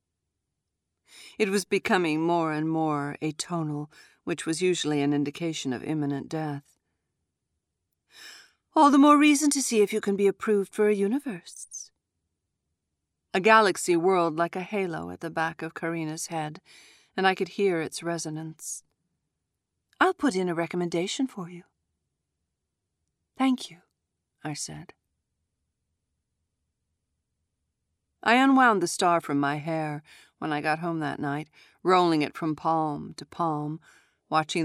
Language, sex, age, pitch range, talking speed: English, female, 50-69, 140-185 Hz, 135 wpm